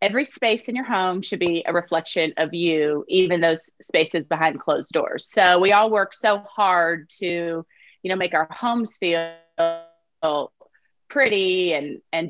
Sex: female